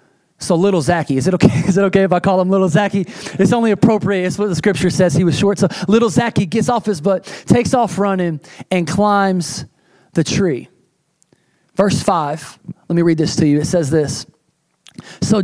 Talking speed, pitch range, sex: 200 wpm, 165-225 Hz, male